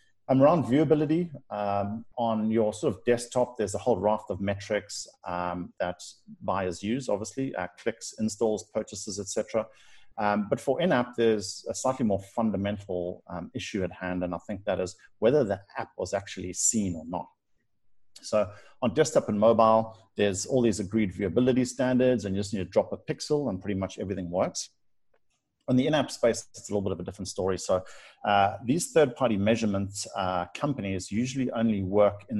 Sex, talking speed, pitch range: male, 185 wpm, 95-120 Hz